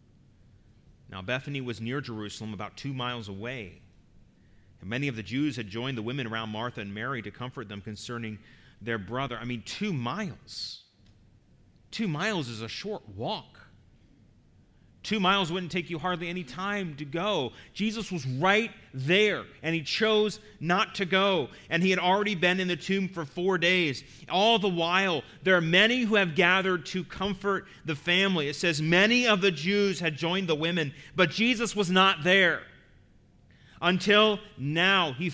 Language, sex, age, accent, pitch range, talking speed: English, male, 30-49, American, 140-195 Hz, 170 wpm